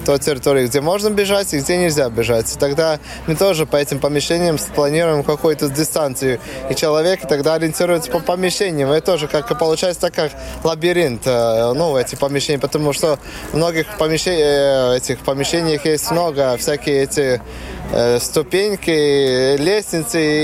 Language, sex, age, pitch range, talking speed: Russian, male, 20-39, 135-160 Hz, 145 wpm